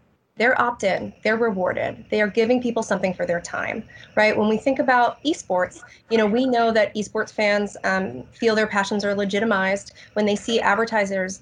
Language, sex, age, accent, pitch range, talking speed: English, female, 20-39, American, 200-235 Hz, 185 wpm